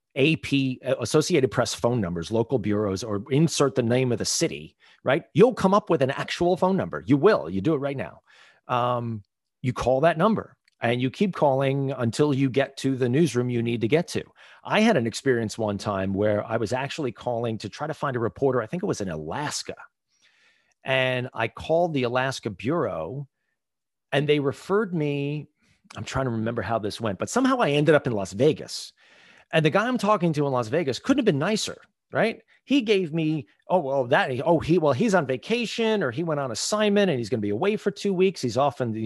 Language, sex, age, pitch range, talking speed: English, male, 40-59, 120-185 Hz, 215 wpm